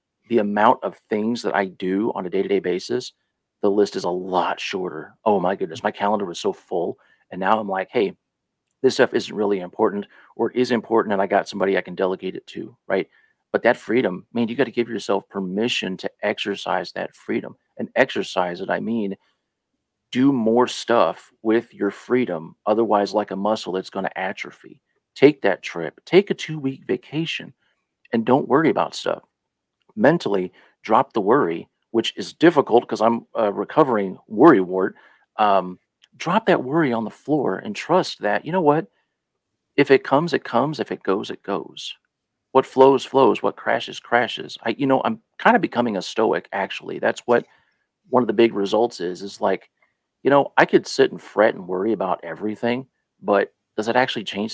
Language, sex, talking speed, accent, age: English, male, 190 wpm, American, 40-59